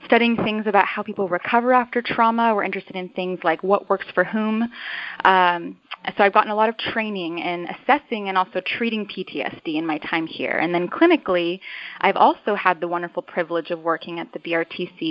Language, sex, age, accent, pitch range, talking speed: English, female, 20-39, American, 175-215 Hz, 195 wpm